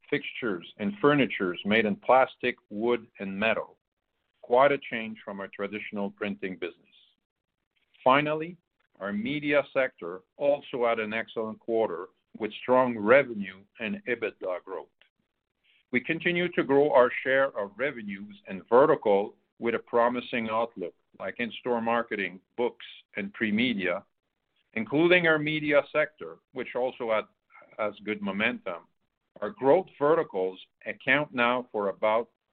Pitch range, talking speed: 110-145 Hz, 125 wpm